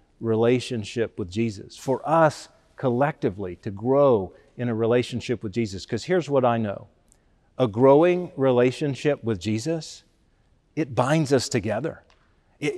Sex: male